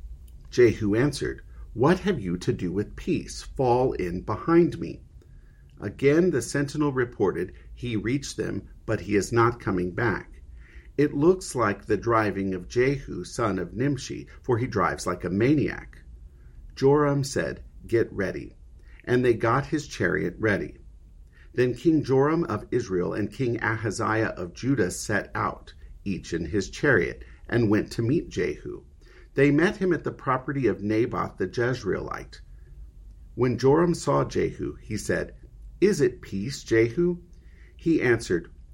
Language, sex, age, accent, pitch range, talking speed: English, male, 50-69, American, 90-140 Hz, 145 wpm